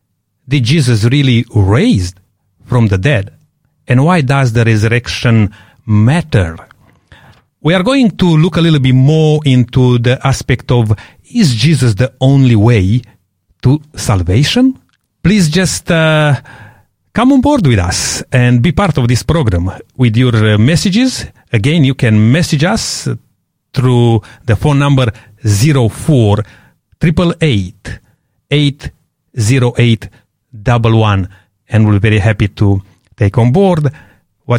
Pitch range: 110-150 Hz